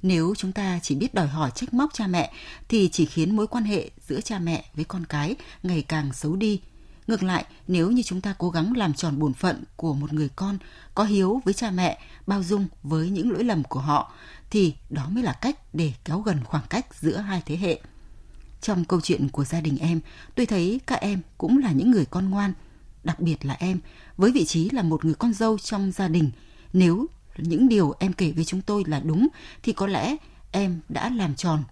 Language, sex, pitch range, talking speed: Vietnamese, female, 155-210 Hz, 225 wpm